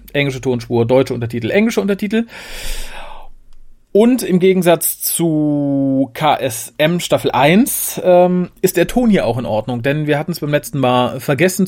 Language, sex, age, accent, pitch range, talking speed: German, male, 40-59, German, 135-190 Hz, 150 wpm